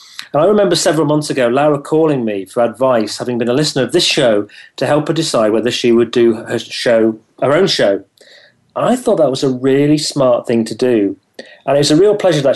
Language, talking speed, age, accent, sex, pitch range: English, 235 wpm, 40-59, British, male, 120-150 Hz